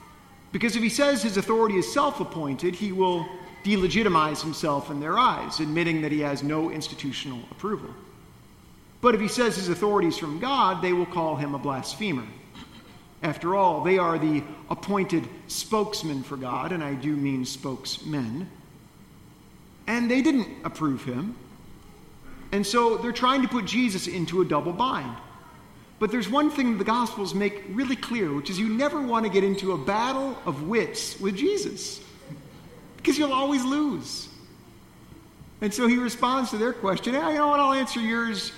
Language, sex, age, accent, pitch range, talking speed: English, male, 50-69, American, 155-230 Hz, 170 wpm